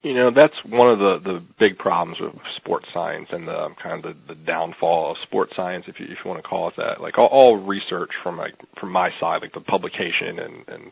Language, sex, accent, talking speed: English, male, American, 245 wpm